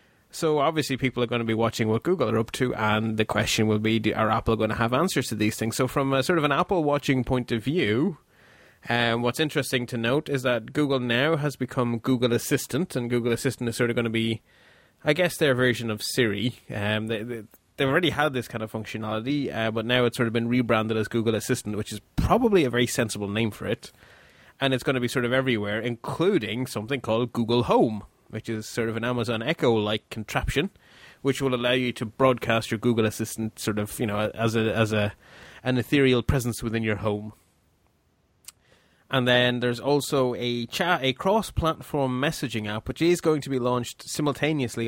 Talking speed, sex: 205 wpm, male